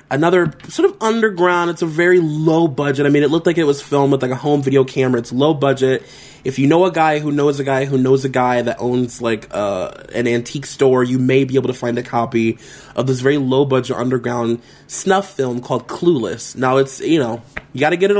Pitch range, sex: 130-155 Hz, male